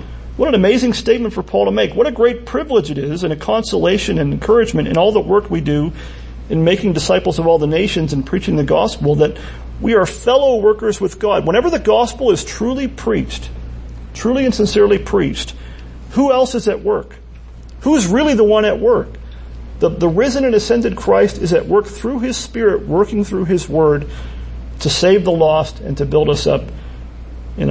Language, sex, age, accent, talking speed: English, male, 40-59, American, 195 wpm